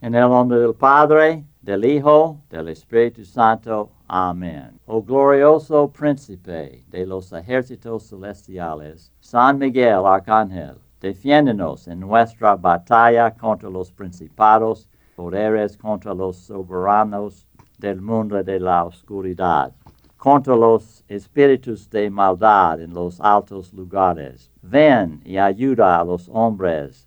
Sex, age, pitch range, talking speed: male, 60-79, 90-110 Hz, 115 wpm